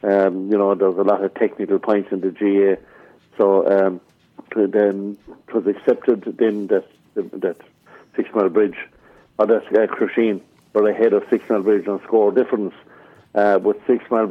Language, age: English, 60-79